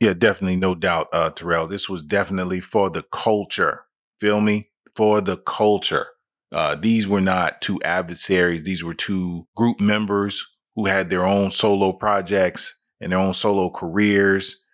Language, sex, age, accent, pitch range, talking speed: English, male, 30-49, American, 90-105 Hz, 160 wpm